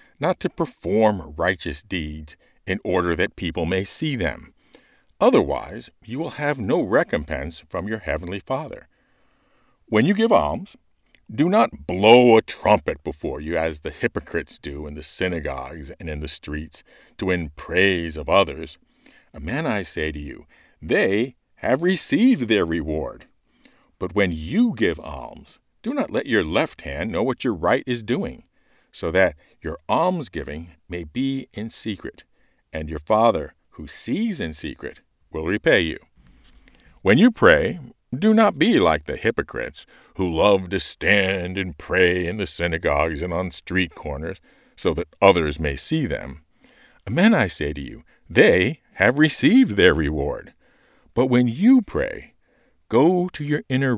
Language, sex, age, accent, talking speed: English, male, 50-69, American, 155 wpm